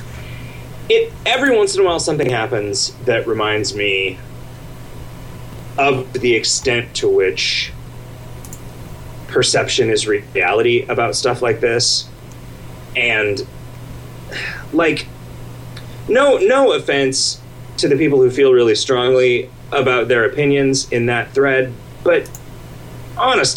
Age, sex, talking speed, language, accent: 30-49, male, 110 wpm, English, American